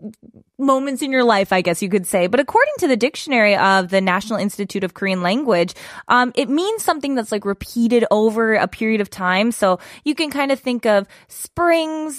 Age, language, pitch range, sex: 20-39, Korean, 195-255 Hz, female